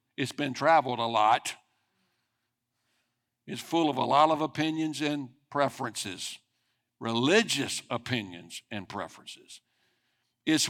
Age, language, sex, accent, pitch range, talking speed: 60-79, English, male, American, 120-160 Hz, 105 wpm